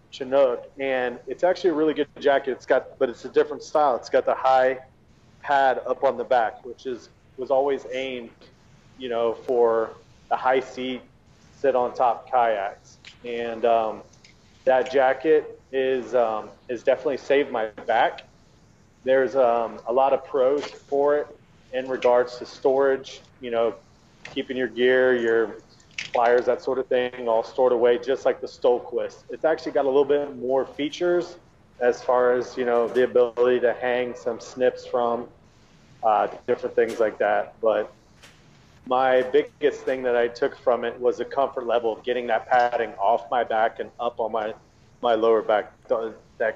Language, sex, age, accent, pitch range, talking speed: English, male, 30-49, American, 120-145 Hz, 175 wpm